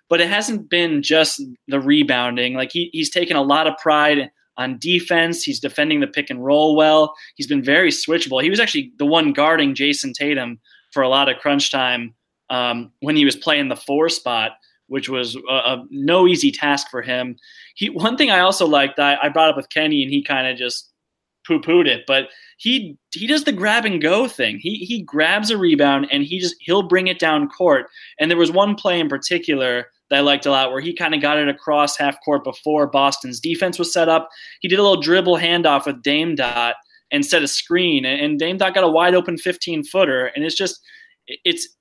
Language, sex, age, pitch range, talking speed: English, male, 20-39, 140-195 Hz, 220 wpm